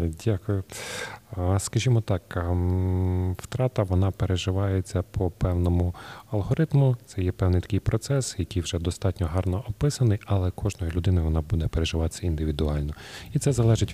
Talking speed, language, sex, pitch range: 125 wpm, Ukrainian, male, 90-110 Hz